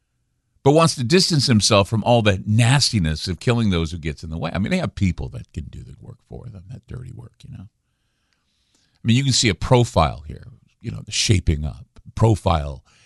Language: English